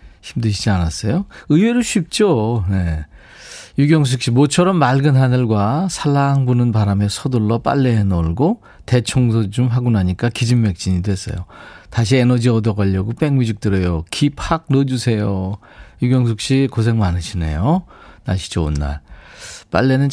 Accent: native